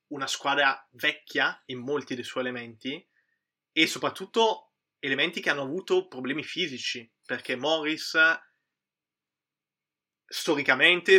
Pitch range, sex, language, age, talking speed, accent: 125-150 Hz, male, Italian, 20-39, 100 wpm, native